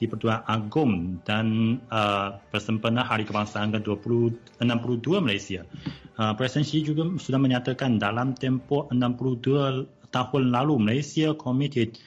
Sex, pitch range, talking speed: male, 110-135 Hz, 115 wpm